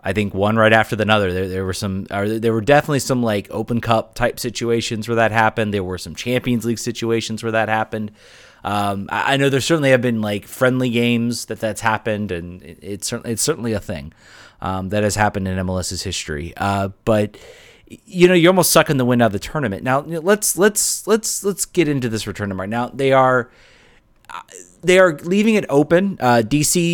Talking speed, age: 220 wpm, 30-49